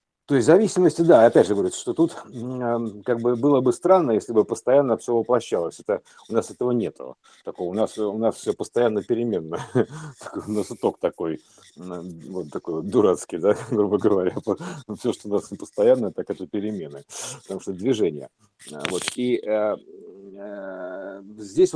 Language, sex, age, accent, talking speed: Russian, male, 50-69, native, 145 wpm